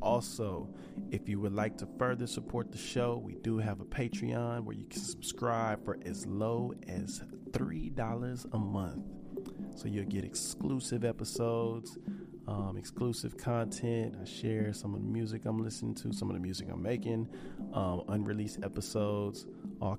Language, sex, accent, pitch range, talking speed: English, male, American, 95-115 Hz, 160 wpm